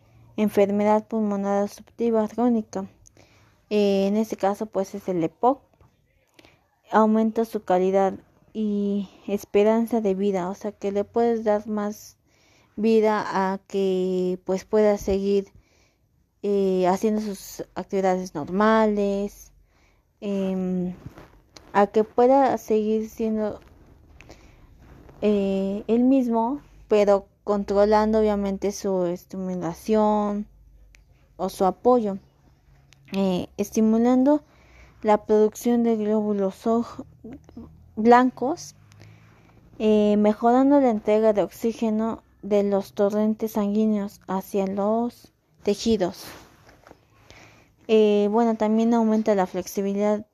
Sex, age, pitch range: female, 20-39, 195-220 Hz